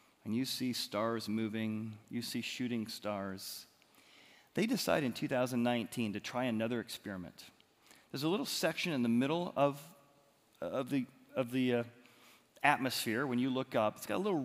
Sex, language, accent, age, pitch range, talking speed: male, English, American, 40-59, 105-130 Hz, 160 wpm